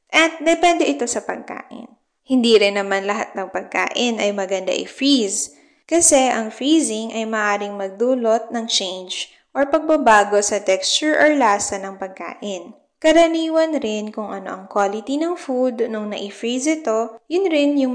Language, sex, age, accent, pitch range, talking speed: Filipino, female, 20-39, native, 205-290 Hz, 145 wpm